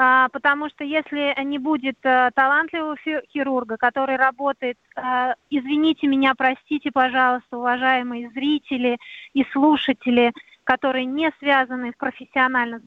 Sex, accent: female, native